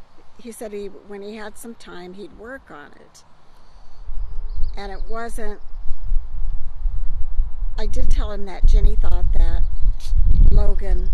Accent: American